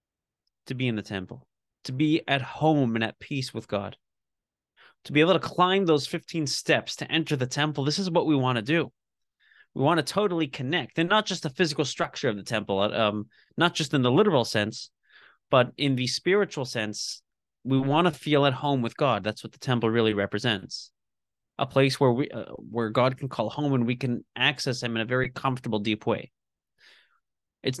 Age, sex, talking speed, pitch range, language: 30-49, male, 205 wpm, 110-145 Hz, English